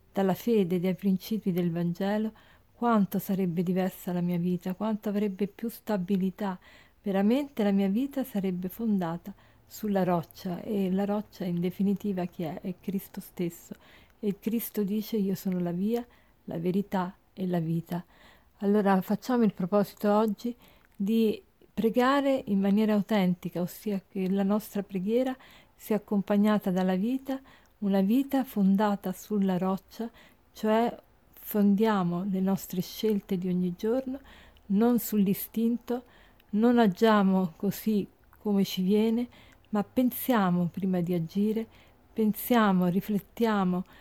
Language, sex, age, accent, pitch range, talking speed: Italian, female, 50-69, native, 190-225 Hz, 130 wpm